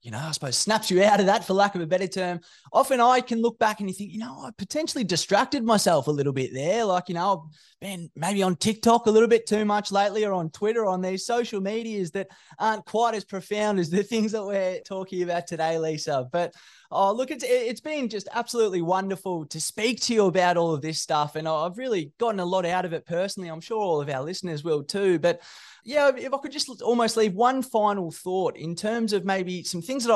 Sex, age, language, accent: male, 20-39, English, Australian